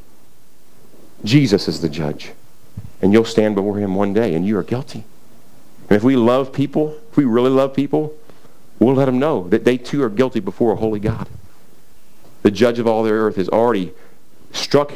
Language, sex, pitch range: English, male, 105-155 Hz